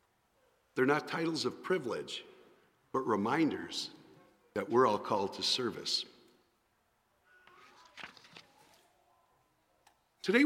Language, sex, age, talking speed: English, male, 50-69, 80 wpm